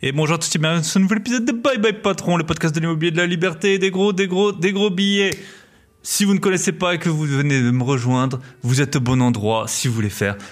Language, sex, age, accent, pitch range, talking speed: French, male, 20-39, French, 120-150 Hz, 285 wpm